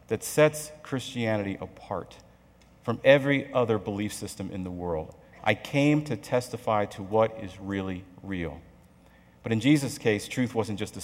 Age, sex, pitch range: 40-59, male, 95-130 Hz